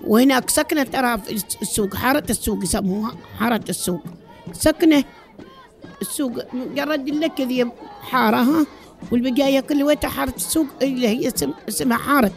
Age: 50-69